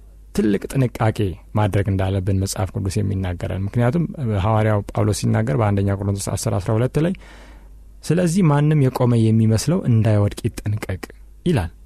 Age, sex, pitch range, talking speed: 30-49, male, 100-120 Hz, 110 wpm